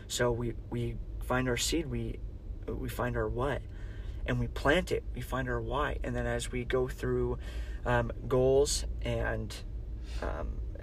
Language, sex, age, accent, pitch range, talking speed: English, male, 30-49, American, 105-125 Hz, 160 wpm